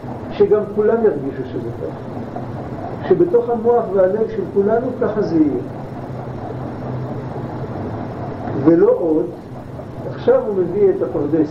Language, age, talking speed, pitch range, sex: Hebrew, 50-69, 105 wpm, 130-200 Hz, male